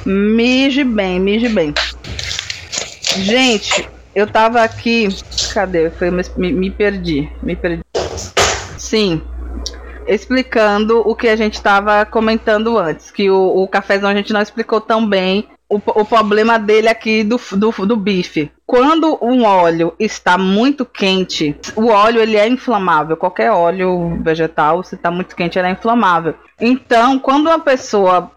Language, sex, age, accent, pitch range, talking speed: Portuguese, female, 20-39, Brazilian, 190-230 Hz, 145 wpm